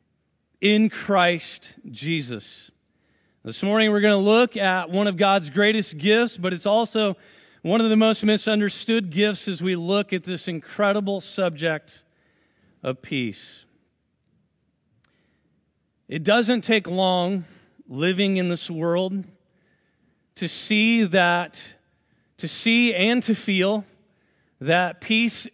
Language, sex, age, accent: English, male, 40-59, American